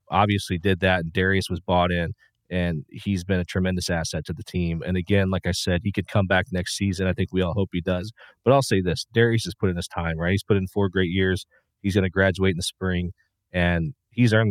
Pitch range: 85-95 Hz